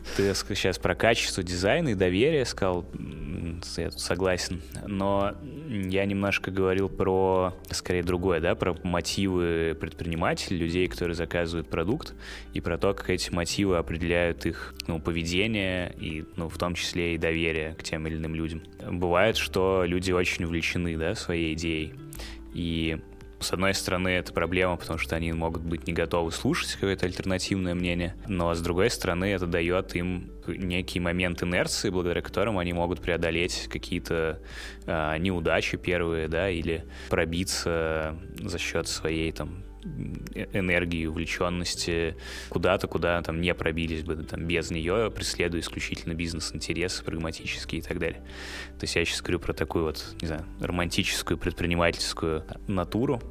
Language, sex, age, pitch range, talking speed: Russian, male, 20-39, 80-95 Hz, 145 wpm